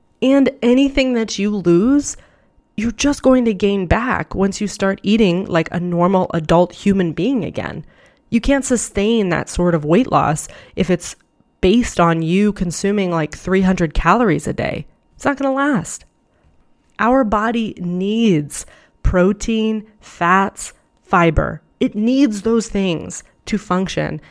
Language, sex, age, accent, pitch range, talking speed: English, female, 20-39, American, 170-220 Hz, 145 wpm